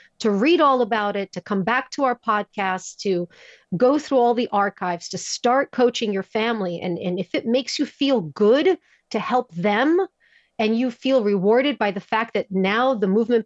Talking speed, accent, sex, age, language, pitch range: 195 wpm, American, female, 40-59, English, 200-255 Hz